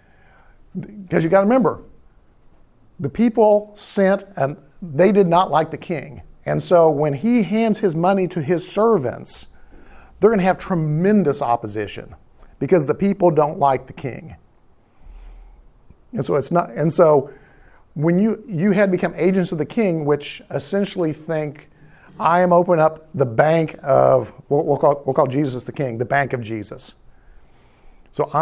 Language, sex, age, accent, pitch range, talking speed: English, male, 50-69, American, 135-175 Hz, 165 wpm